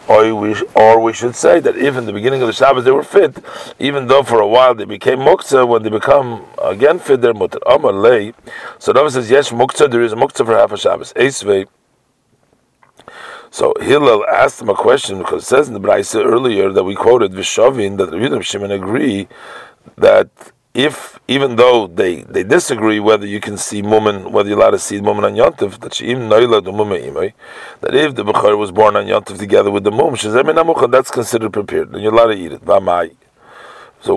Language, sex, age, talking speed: English, male, 40-59, 200 wpm